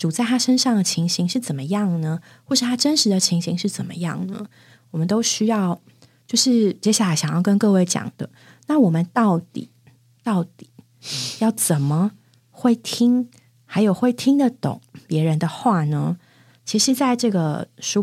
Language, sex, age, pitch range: Chinese, female, 30-49, 160-220 Hz